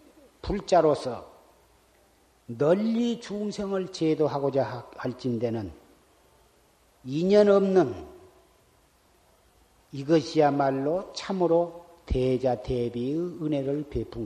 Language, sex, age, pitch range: Korean, male, 40-59, 120-170 Hz